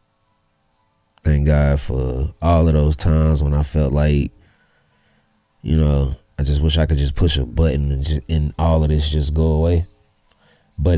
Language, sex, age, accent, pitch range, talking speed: English, male, 30-49, American, 75-95 Hz, 175 wpm